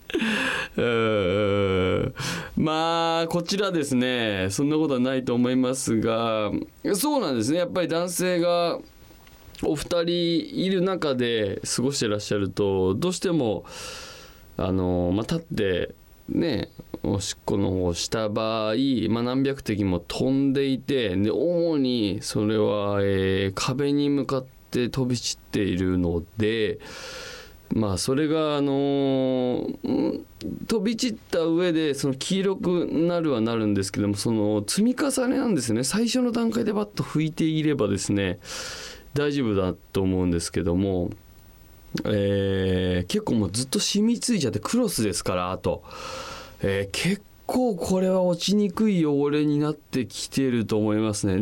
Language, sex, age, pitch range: Japanese, male, 20-39, 100-170 Hz